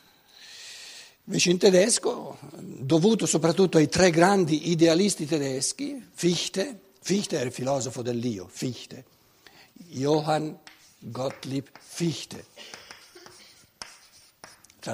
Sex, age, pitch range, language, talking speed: male, 60-79, 130-185 Hz, Italian, 85 wpm